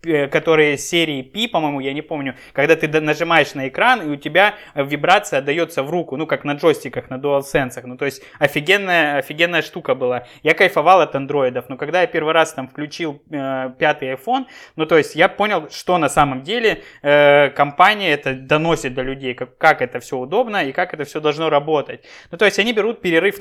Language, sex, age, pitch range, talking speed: Russian, male, 20-39, 145-185 Hz, 200 wpm